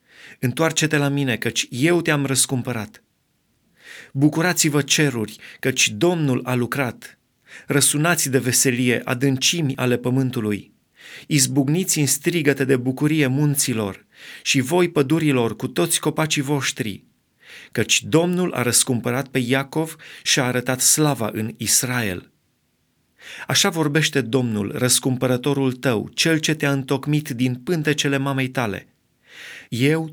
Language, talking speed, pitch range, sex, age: Romanian, 115 wpm, 125-150 Hz, male, 30-49